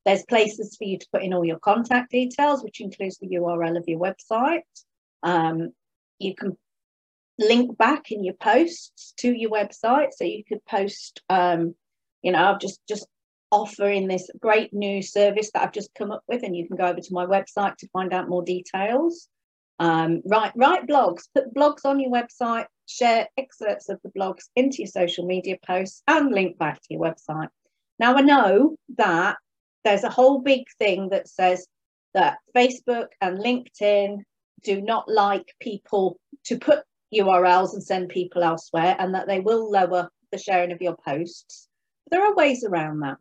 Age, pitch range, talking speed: 40-59, 185-250 Hz, 180 wpm